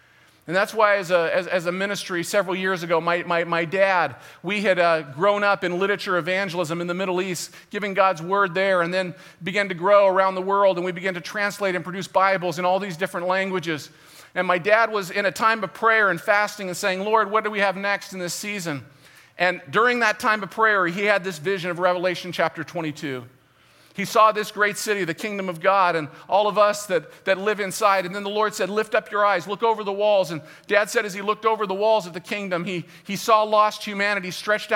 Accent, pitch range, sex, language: American, 180-210 Hz, male, English